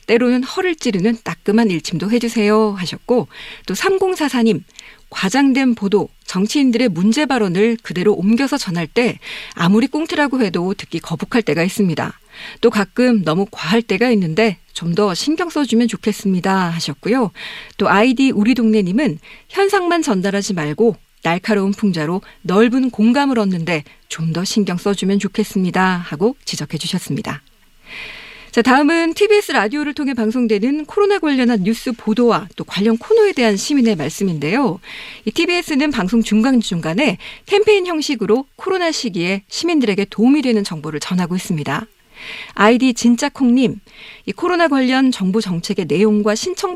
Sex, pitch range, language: female, 190-265 Hz, Korean